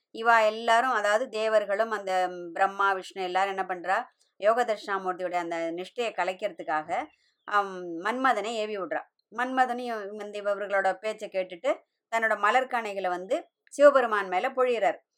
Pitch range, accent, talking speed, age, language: 190-230 Hz, native, 110 wpm, 20-39, Tamil